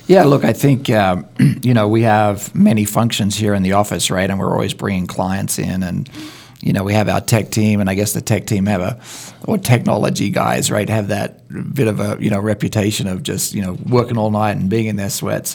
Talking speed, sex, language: 235 wpm, male, English